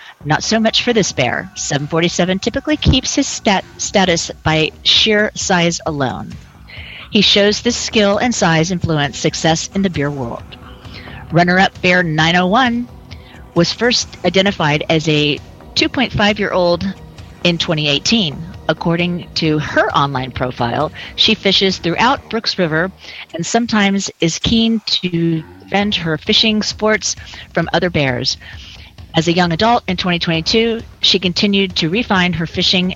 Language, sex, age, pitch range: English, female, 40-59, 150-195 Hz